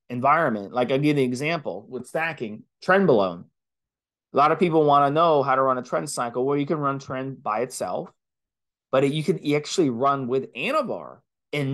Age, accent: 30-49, American